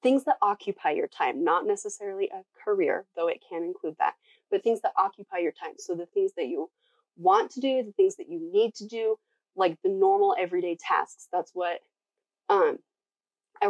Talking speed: 195 wpm